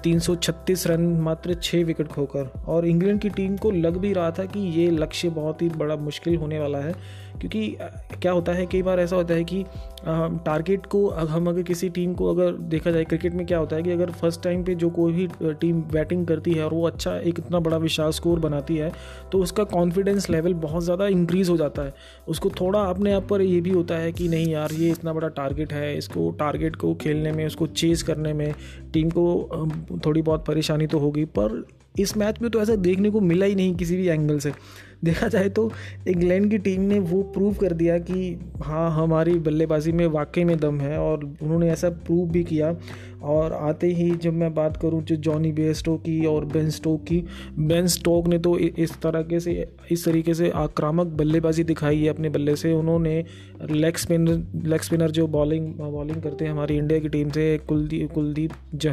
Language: Hindi